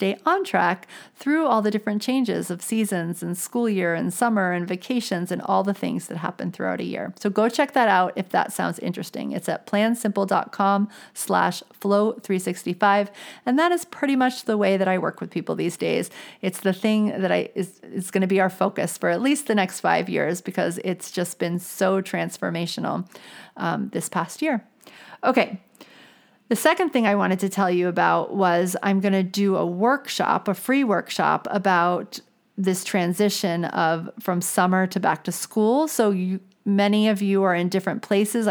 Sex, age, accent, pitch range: female, 40-59, American, 185-230 Hz